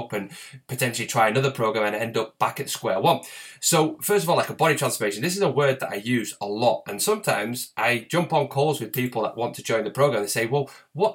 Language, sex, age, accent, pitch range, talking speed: English, male, 20-39, British, 110-145 Hz, 255 wpm